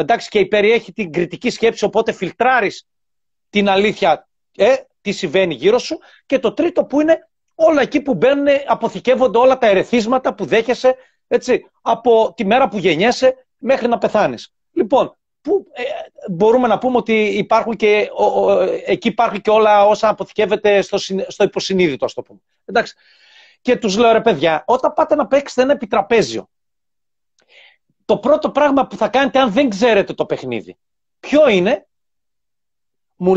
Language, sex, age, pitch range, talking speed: Greek, male, 40-59, 205-275 Hz, 160 wpm